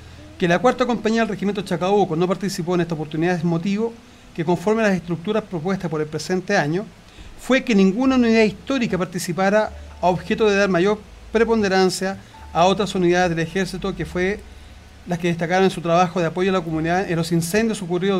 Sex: male